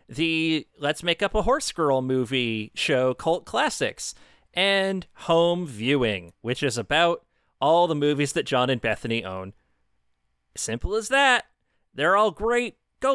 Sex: male